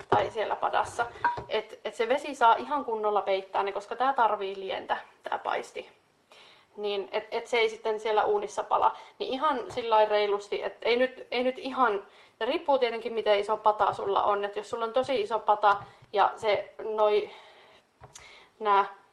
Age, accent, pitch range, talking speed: 30-49, native, 205-255 Hz, 165 wpm